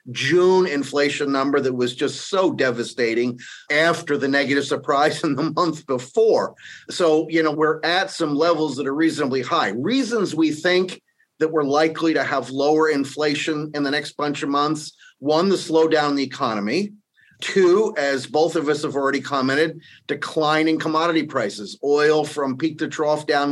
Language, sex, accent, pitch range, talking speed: English, male, American, 140-165 Hz, 170 wpm